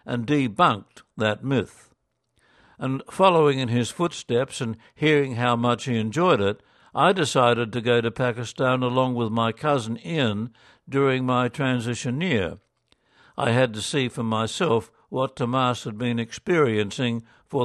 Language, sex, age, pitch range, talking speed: English, male, 60-79, 115-140 Hz, 145 wpm